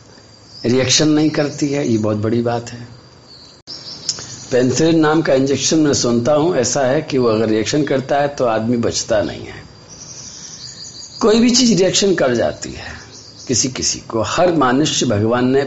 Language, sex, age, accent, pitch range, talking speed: Hindi, male, 50-69, native, 120-155 Hz, 165 wpm